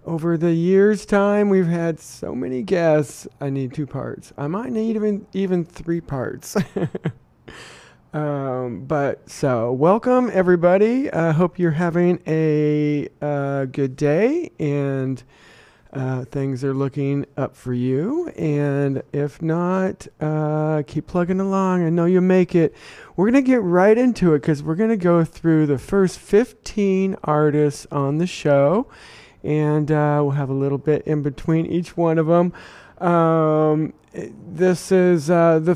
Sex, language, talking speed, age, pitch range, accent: male, English, 150 wpm, 40-59, 140-175 Hz, American